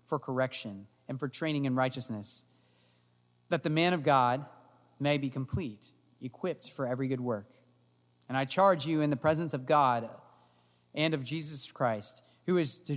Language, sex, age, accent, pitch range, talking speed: English, male, 30-49, American, 120-160 Hz, 165 wpm